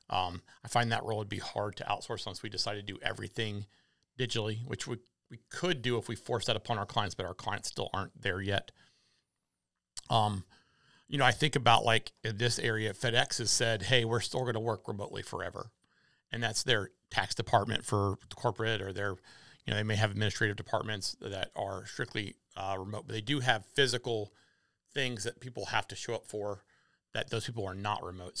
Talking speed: 205 wpm